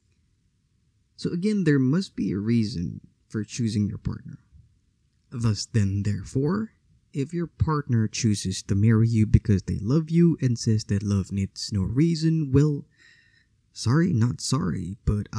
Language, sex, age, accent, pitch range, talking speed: English, male, 20-39, American, 105-140 Hz, 145 wpm